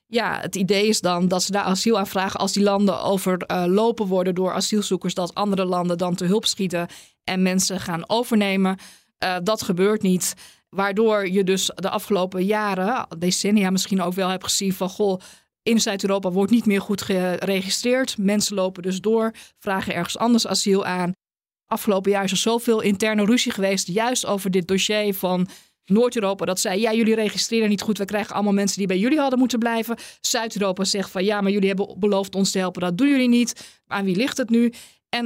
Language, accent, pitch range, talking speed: Dutch, Dutch, 185-225 Hz, 195 wpm